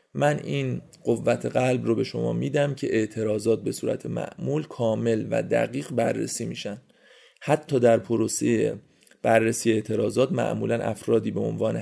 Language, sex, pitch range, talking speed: Persian, male, 110-125 Hz, 135 wpm